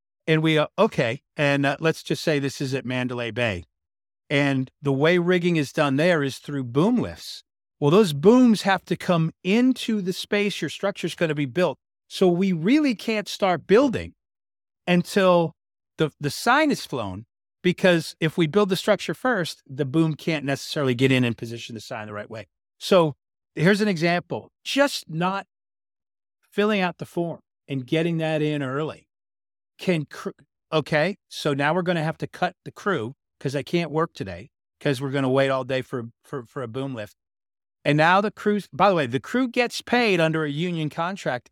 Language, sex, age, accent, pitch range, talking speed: English, male, 50-69, American, 135-185 Hz, 195 wpm